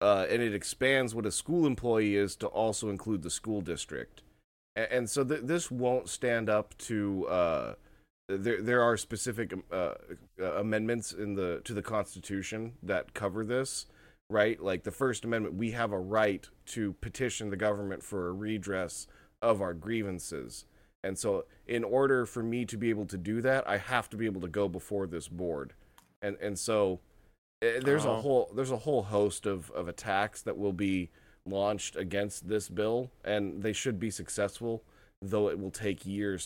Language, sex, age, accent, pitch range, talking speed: English, male, 30-49, American, 95-115 Hz, 185 wpm